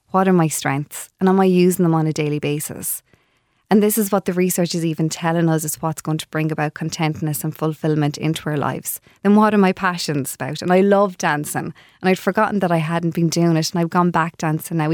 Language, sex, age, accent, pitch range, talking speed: English, female, 20-39, Irish, 155-185 Hz, 240 wpm